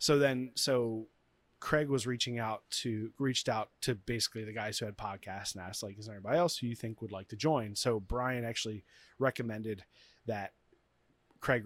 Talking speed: 190 wpm